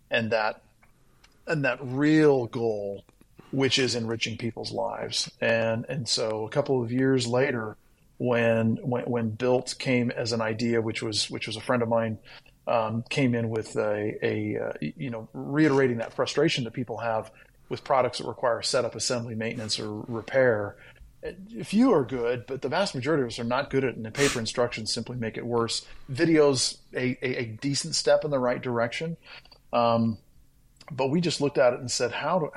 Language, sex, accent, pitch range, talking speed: English, male, American, 110-130 Hz, 190 wpm